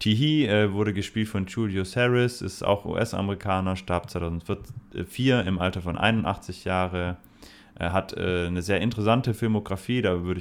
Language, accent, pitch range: German, German, 85-100 Hz